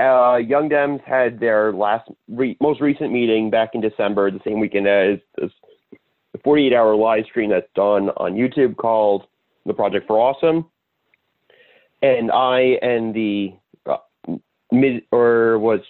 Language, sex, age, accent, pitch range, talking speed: English, male, 30-49, American, 105-125 Hz, 145 wpm